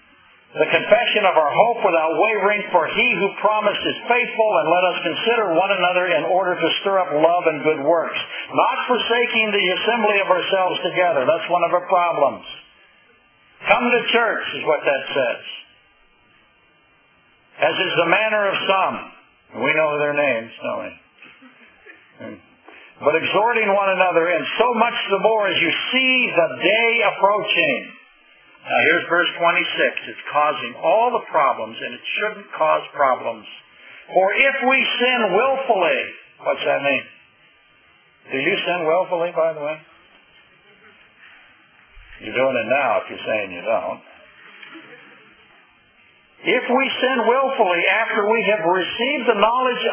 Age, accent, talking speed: 60-79, American, 145 wpm